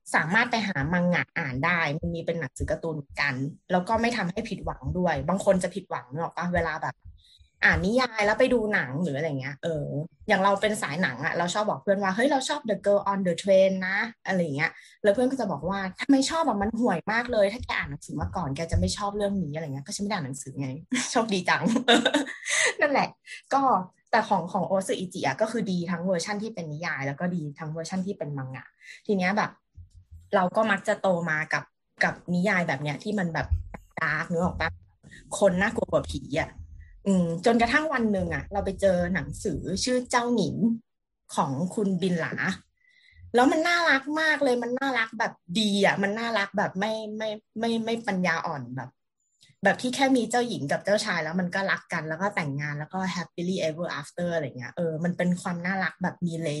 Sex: female